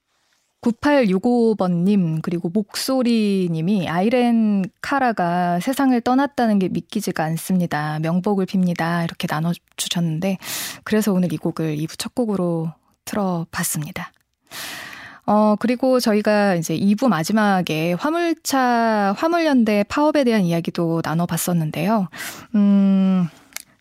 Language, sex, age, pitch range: Korean, female, 20-39, 175-240 Hz